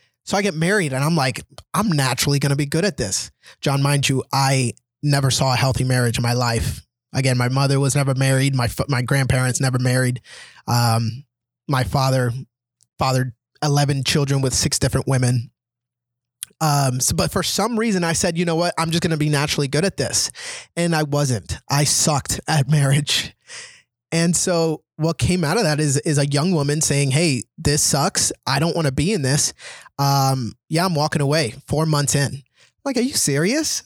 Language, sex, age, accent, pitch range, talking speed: English, male, 20-39, American, 125-160 Hz, 195 wpm